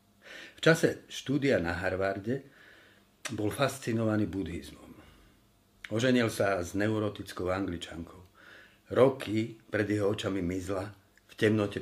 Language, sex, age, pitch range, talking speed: Slovak, male, 50-69, 95-110 Hz, 100 wpm